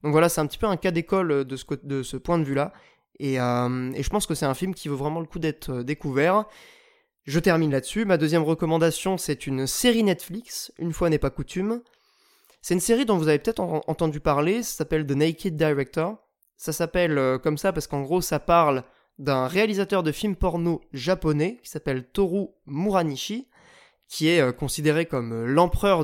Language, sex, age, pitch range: French, male, 20-39, 145-185 Hz